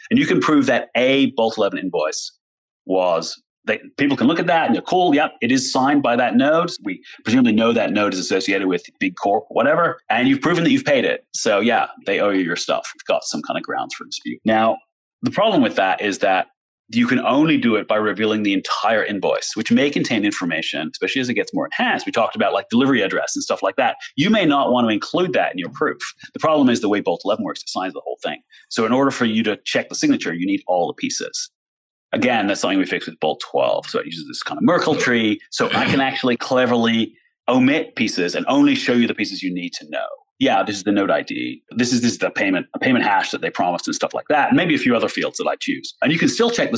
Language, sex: English, male